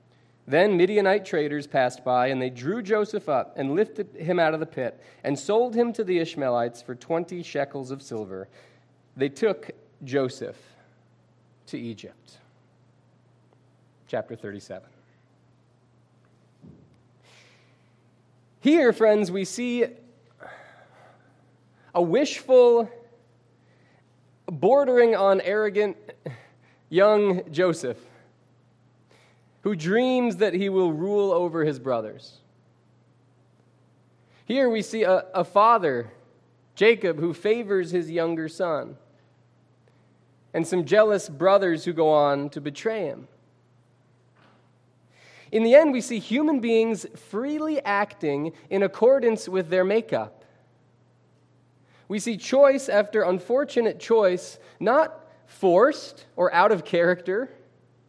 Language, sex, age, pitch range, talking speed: English, male, 30-49, 125-210 Hz, 105 wpm